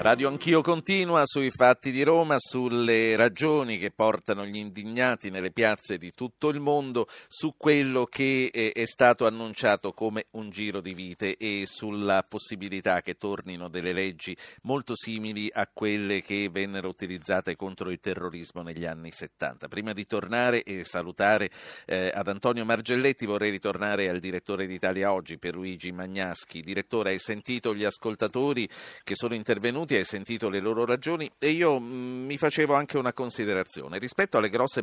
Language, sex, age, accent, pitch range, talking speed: Italian, male, 50-69, native, 95-125 Hz, 155 wpm